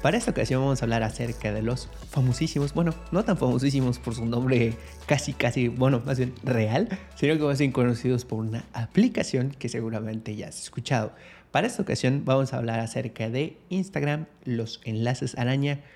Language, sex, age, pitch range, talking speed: Spanish, male, 30-49, 115-145 Hz, 175 wpm